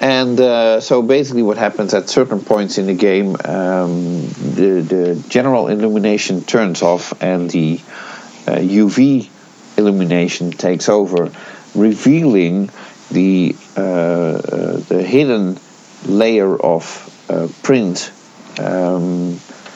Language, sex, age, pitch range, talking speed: English, male, 50-69, 90-105 Hz, 110 wpm